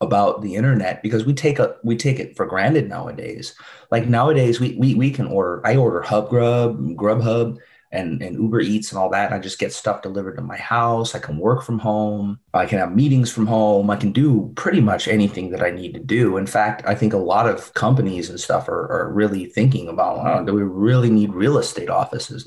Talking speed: 225 wpm